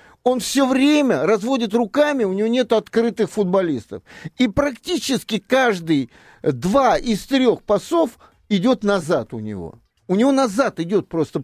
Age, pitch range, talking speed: 50-69, 180-255 Hz, 135 wpm